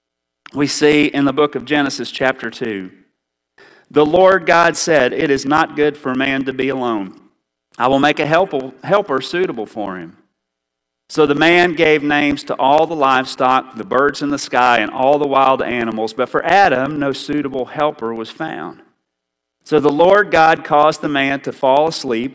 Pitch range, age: 130-170 Hz, 40-59